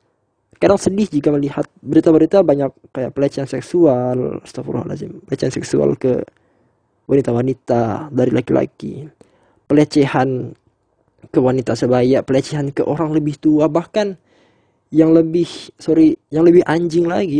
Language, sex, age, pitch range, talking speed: Indonesian, male, 20-39, 135-170 Hz, 115 wpm